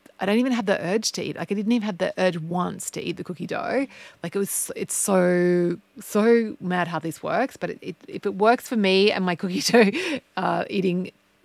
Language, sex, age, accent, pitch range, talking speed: English, female, 30-49, Australian, 175-230 Hz, 235 wpm